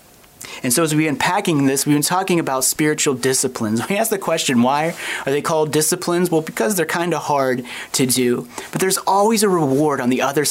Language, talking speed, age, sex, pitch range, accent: English, 215 wpm, 30-49, male, 130-175 Hz, American